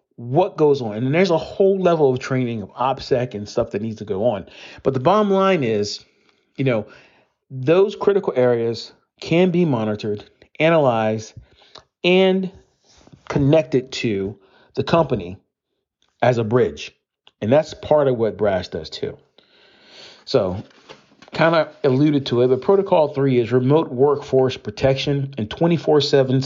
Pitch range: 110-145 Hz